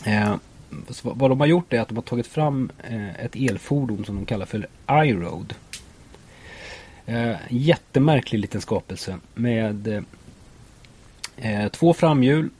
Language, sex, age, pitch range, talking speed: Swedish, male, 30-49, 110-135 Hz, 120 wpm